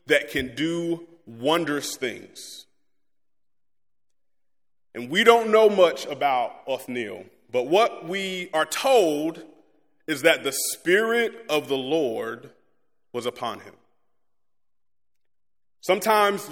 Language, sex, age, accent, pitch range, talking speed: English, male, 30-49, American, 155-205 Hz, 100 wpm